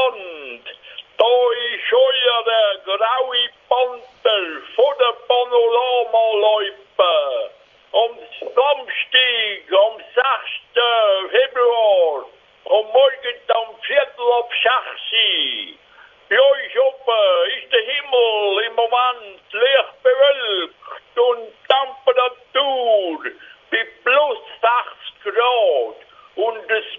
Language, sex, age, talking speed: German, male, 60-79, 85 wpm